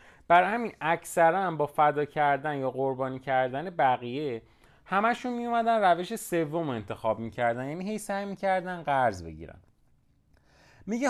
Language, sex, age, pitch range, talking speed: Persian, male, 30-49, 120-180 Hz, 130 wpm